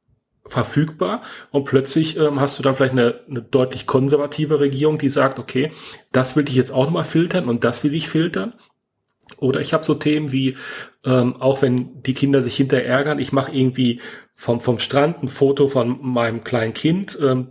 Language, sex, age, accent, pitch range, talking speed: German, male, 40-59, German, 130-150 Hz, 185 wpm